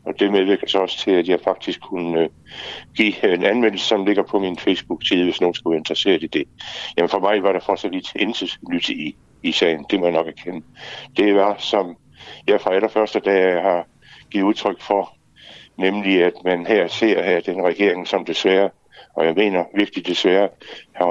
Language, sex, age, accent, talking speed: Danish, male, 60-79, native, 190 wpm